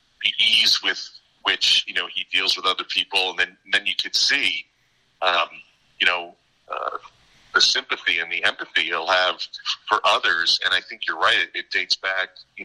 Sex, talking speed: male, 195 wpm